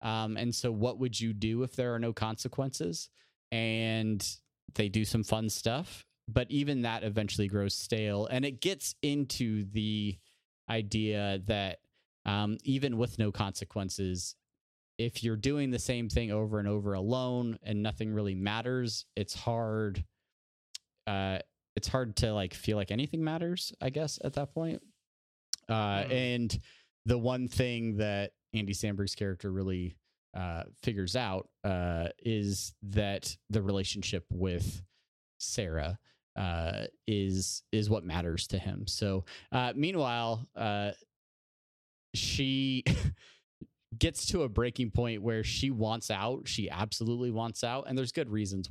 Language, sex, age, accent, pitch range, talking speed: English, male, 20-39, American, 100-125 Hz, 140 wpm